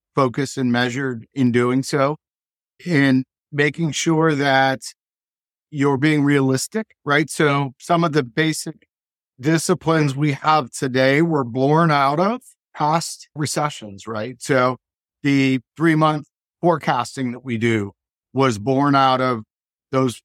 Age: 50-69